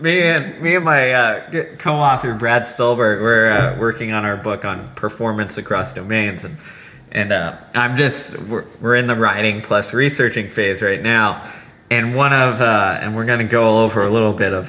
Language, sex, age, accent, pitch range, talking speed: English, male, 20-39, American, 105-125 Hz, 190 wpm